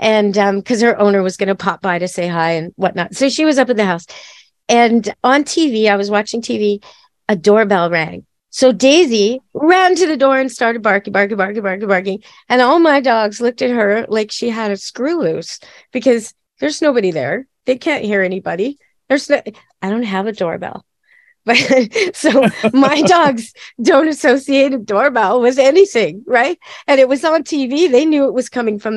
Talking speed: 195 wpm